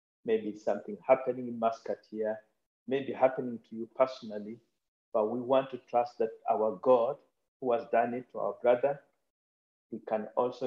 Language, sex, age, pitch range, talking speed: English, male, 50-69, 110-155 Hz, 165 wpm